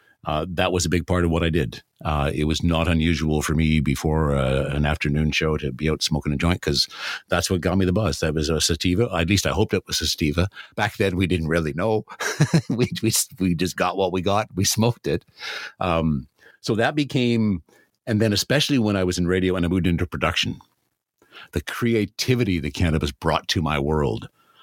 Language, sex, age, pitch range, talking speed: English, male, 60-79, 80-100 Hz, 215 wpm